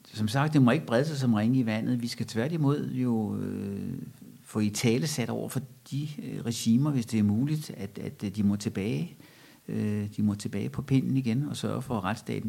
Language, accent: Danish, native